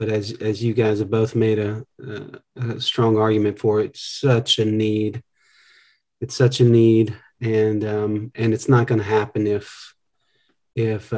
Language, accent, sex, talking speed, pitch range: English, American, male, 170 wpm, 115-140 Hz